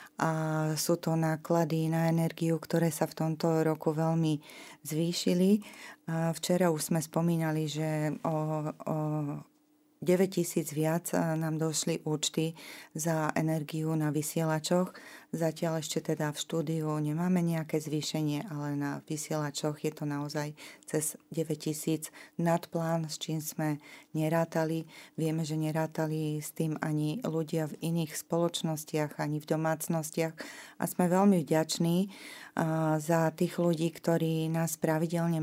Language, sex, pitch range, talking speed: Slovak, female, 155-165 Hz, 125 wpm